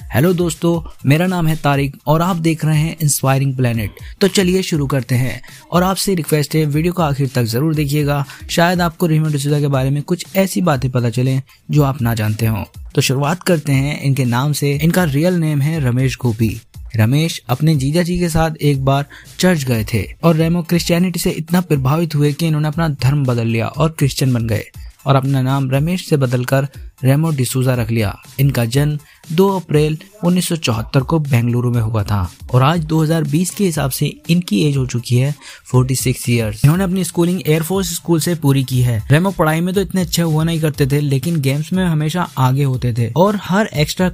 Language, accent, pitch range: Hindi, native, 125-165 Hz